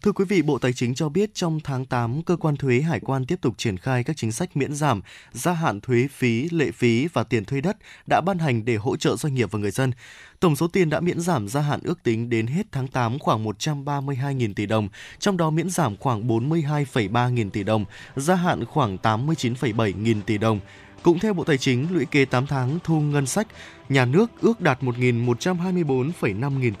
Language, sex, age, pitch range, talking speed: Vietnamese, male, 20-39, 120-165 Hz, 215 wpm